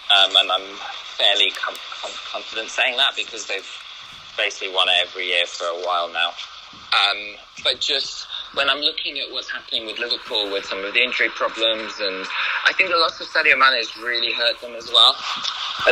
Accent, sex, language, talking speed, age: British, male, English, 185 wpm, 20-39